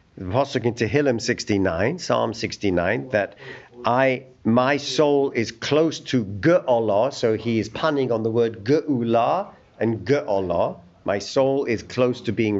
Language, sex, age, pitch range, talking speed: English, male, 50-69, 120-185 Hz, 150 wpm